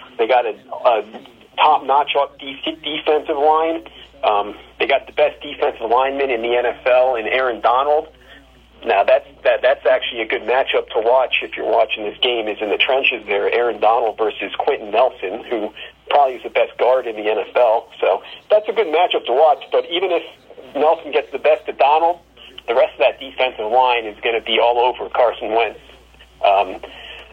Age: 40-59